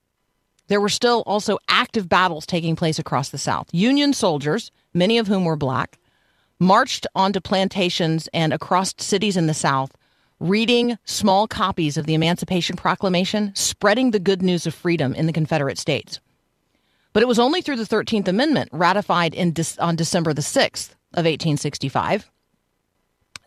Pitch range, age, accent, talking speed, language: 155-200 Hz, 40-59, American, 155 wpm, English